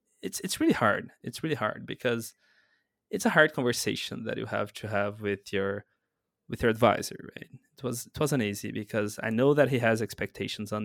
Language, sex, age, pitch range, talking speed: English, male, 20-39, 115-165 Hz, 200 wpm